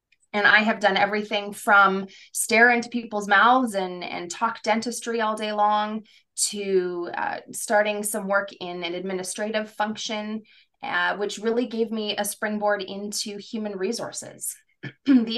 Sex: female